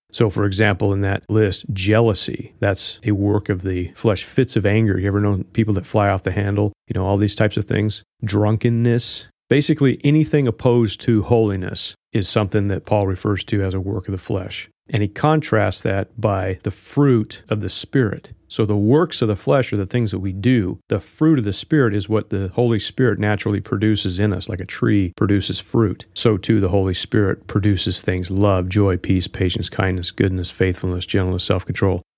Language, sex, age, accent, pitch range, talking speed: English, male, 40-59, American, 95-120 Hz, 200 wpm